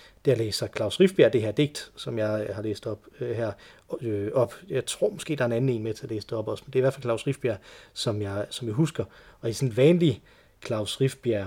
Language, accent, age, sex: Danish, native, 30-49, male